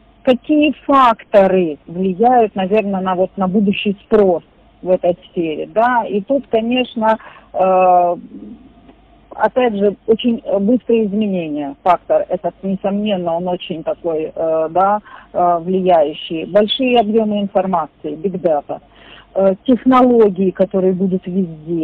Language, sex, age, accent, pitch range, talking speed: Russian, female, 40-59, native, 180-235 Hz, 115 wpm